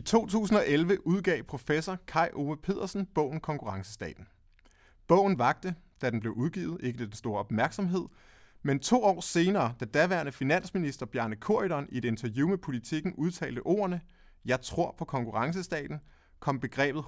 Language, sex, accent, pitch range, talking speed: Danish, male, native, 115-170 Hz, 150 wpm